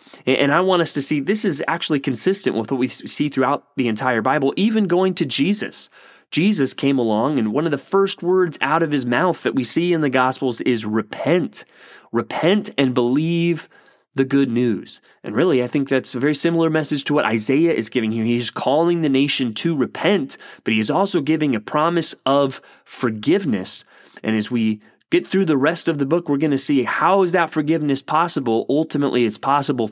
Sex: male